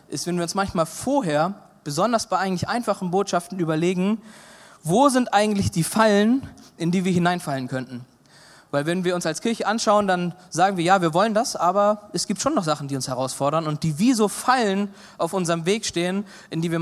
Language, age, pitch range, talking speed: German, 20-39, 150-205 Hz, 205 wpm